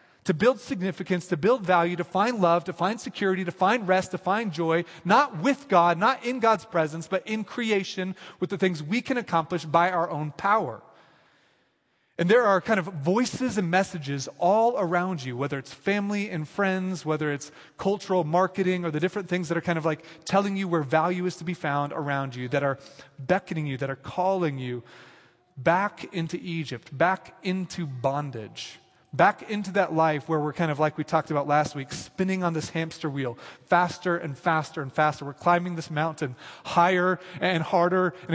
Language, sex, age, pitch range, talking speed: English, male, 30-49, 160-200 Hz, 190 wpm